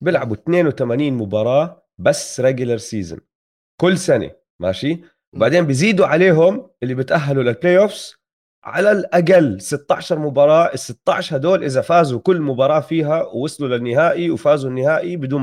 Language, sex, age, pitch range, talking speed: Arabic, male, 30-49, 115-160 Hz, 130 wpm